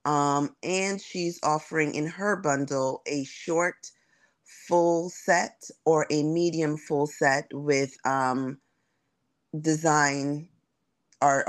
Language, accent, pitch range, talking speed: English, American, 140-160 Hz, 105 wpm